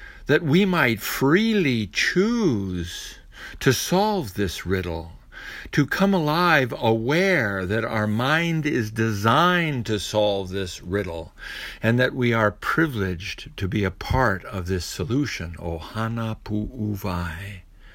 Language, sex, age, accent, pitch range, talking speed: English, male, 60-79, American, 95-130 Hz, 120 wpm